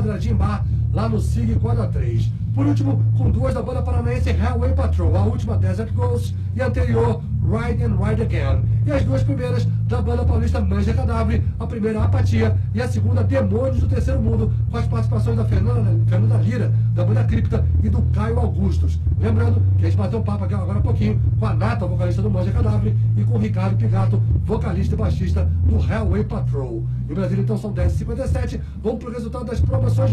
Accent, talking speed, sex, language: Brazilian, 195 wpm, male, English